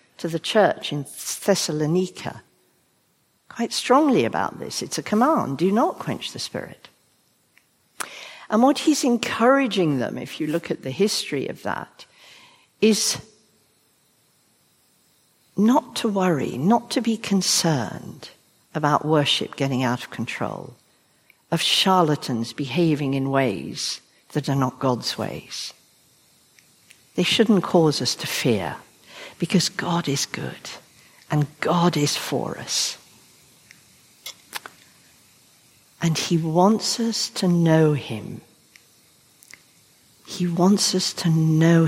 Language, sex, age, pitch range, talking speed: English, female, 60-79, 150-215 Hz, 115 wpm